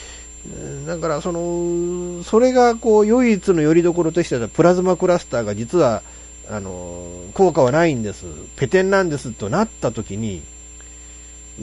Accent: native